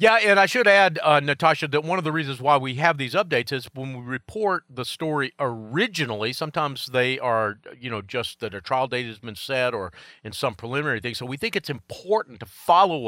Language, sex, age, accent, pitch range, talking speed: English, male, 40-59, American, 115-150 Hz, 225 wpm